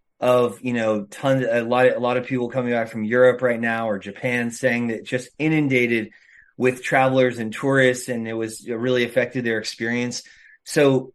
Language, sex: English, male